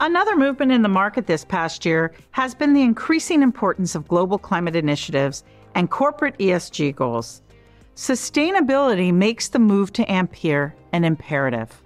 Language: English